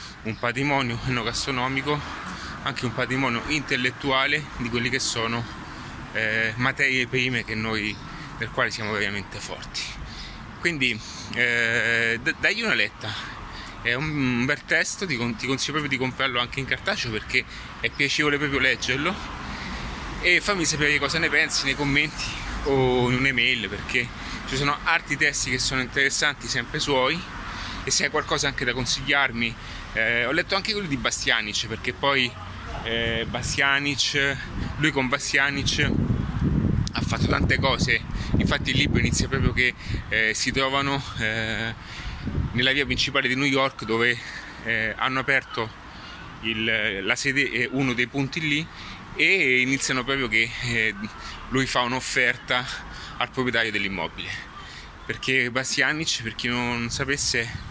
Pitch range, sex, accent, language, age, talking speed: 115-140 Hz, male, native, Italian, 20-39, 140 wpm